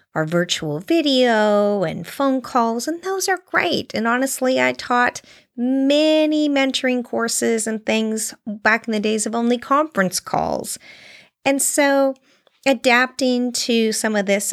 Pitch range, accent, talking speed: 200-275 Hz, American, 140 wpm